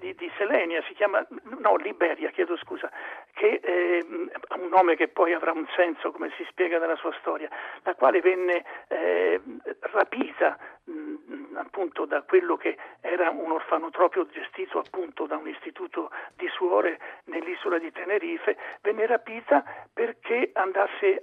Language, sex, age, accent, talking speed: Italian, male, 50-69, native, 135 wpm